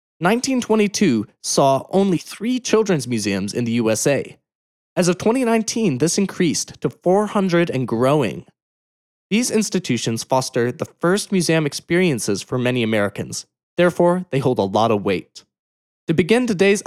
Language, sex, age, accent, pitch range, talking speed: English, male, 20-39, American, 125-185 Hz, 135 wpm